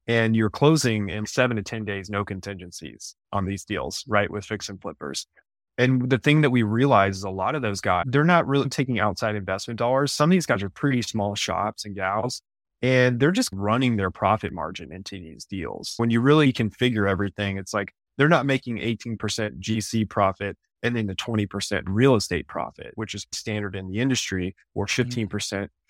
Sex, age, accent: male, 20-39, American